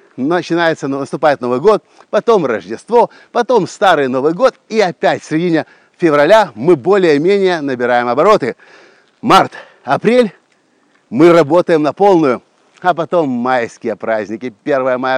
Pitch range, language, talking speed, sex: 145-200 Hz, Russian, 125 wpm, male